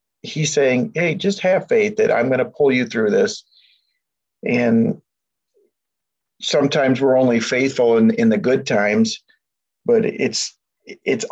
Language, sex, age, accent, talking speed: English, male, 50-69, American, 145 wpm